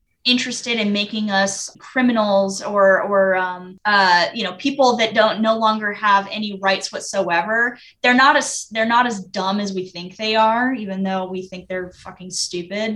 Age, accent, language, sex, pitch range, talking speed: 10-29, American, English, female, 195-225 Hz, 180 wpm